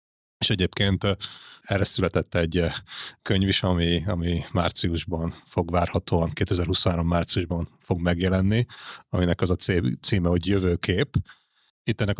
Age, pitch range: 30-49, 85-100 Hz